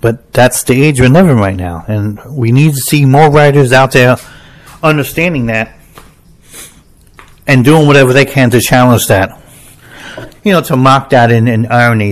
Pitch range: 115-145 Hz